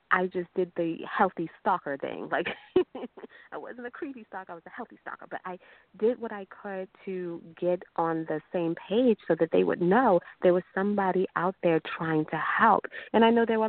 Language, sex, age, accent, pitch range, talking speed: English, female, 30-49, American, 155-205 Hz, 210 wpm